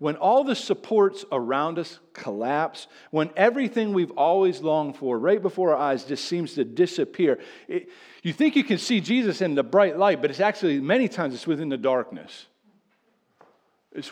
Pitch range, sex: 145-215 Hz, male